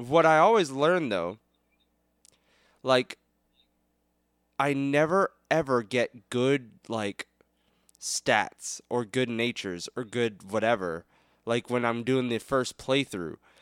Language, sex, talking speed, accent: English, male, 115 wpm, American